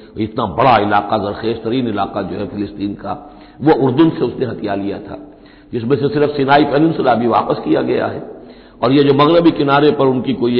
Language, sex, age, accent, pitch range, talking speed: Hindi, male, 60-79, native, 120-155 Hz, 190 wpm